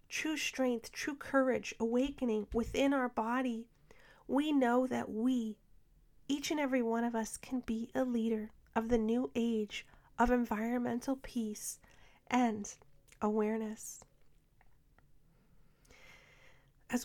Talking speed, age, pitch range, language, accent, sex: 115 wpm, 30-49, 225-250 Hz, English, American, female